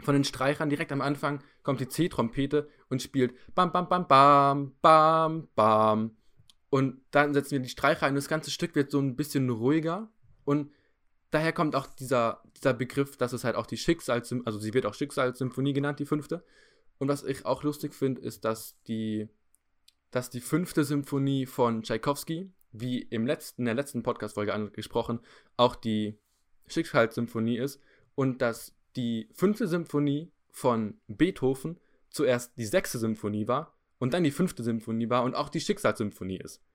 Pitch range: 115-145 Hz